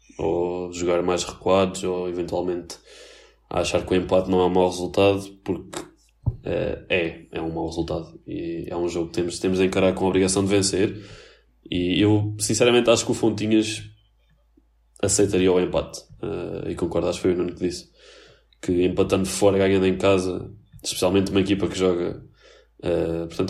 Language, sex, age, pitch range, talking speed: Portuguese, male, 20-39, 90-105 Hz, 170 wpm